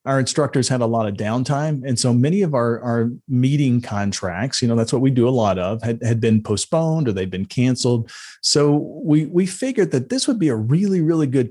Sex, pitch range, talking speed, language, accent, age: male, 115-140 Hz, 230 wpm, English, American, 40-59